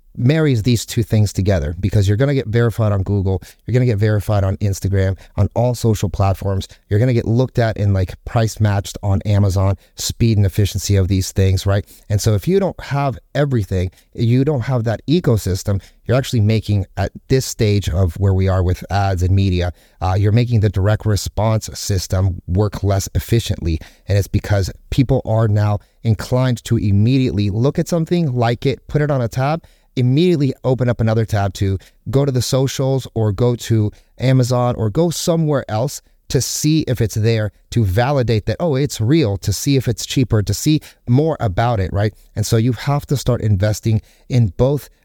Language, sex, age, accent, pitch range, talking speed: English, male, 30-49, American, 100-125 Hz, 190 wpm